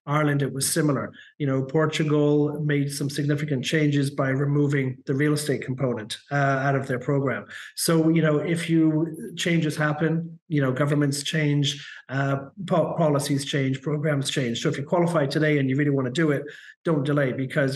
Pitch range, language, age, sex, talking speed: 140-160 Hz, English, 40-59, male, 180 wpm